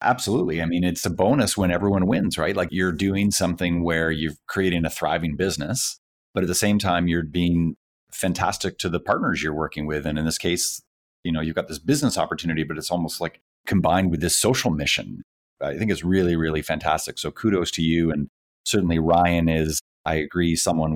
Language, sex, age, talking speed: English, male, 30-49, 205 wpm